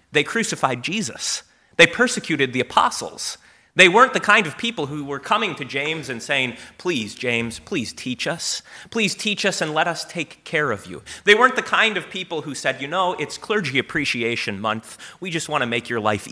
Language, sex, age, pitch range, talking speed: English, male, 30-49, 125-180 Hz, 205 wpm